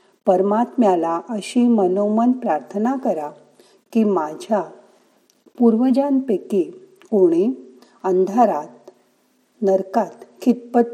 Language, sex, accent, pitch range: Marathi, female, native, 185-245 Hz